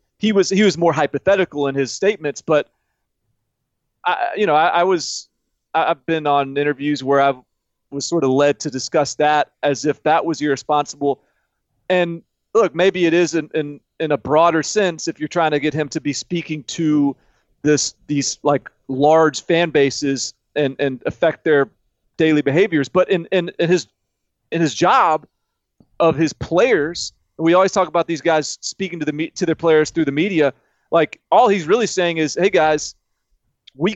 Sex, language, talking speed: male, English, 180 wpm